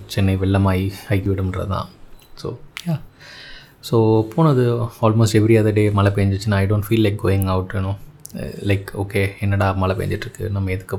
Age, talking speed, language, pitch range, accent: 20-39, 170 wpm, Tamil, 100-115 Hz, native